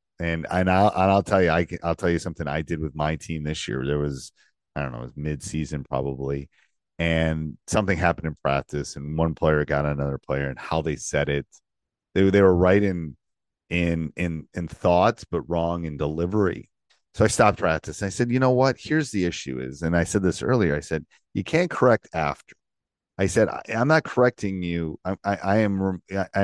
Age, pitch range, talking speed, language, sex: 40-59, 75-95 Hz, 220 wpm, English, male